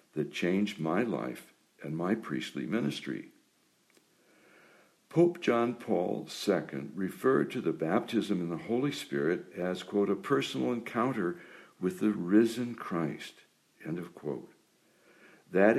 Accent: American